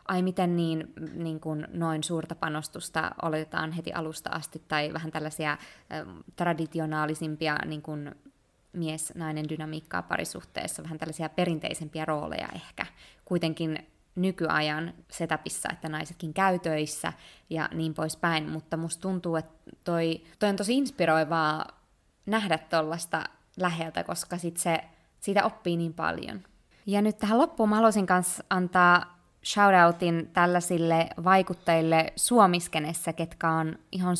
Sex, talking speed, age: female, 120 wpm, 20-39